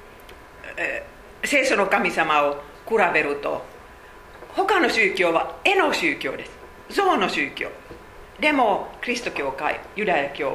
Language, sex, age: Japanese, female, 50-69